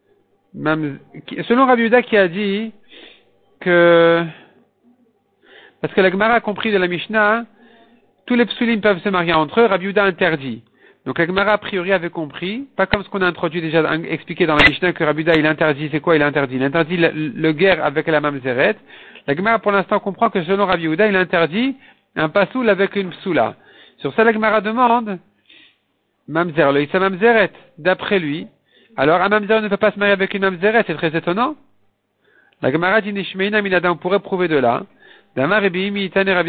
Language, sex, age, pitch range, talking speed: French, male, 50-69, 155-205 Hz, 200 wpm